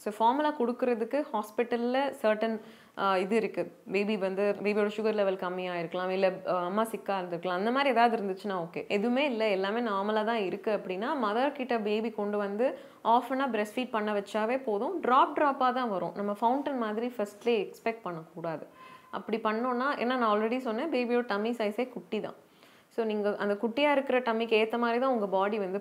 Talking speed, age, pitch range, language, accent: 170 wpm, 20-39, 185-235 Hz, Tamil, native